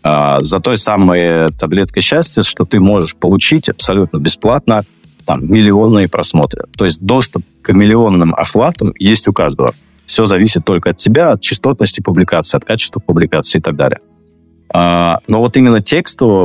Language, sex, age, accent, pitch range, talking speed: Russian, male, 20-39, native, 80-105 Hz, 145 wpm